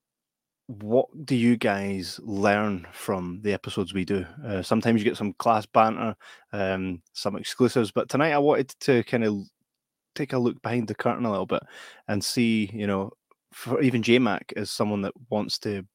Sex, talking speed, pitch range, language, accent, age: male, 185 wpm, 100-115 Hz, English, British, 20-39